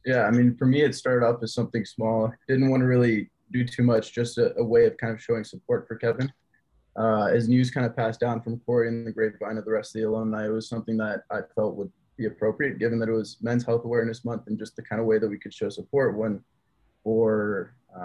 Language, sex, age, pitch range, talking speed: English, male, 20-39, 110-125 Hz, 255 wpm